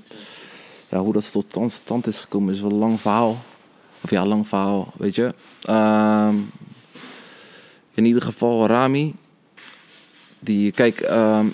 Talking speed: 140 wpm